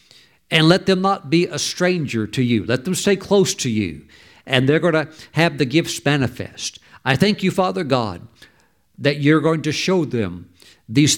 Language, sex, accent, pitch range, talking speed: English, male, American, 125-175 Hz, 190 wpm